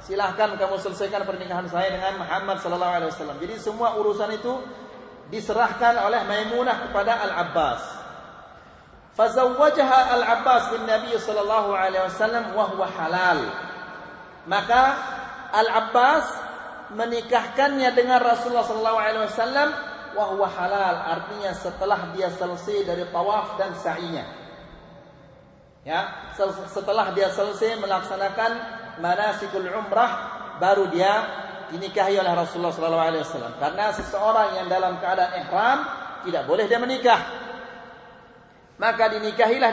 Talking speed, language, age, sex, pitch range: 105 wpm, Malay, 40-59, male, 190-230 Hz